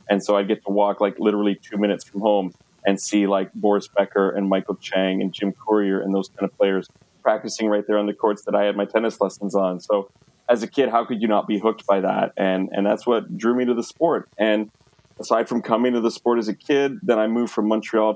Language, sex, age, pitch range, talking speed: English, male, 30-49, 100-110 Hz, 255 wpm